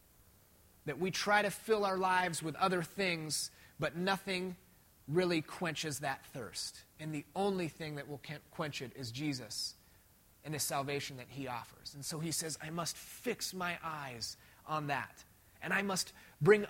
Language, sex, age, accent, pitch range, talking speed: English, male, 30-49, American, 115-160 Hz, 170 wpm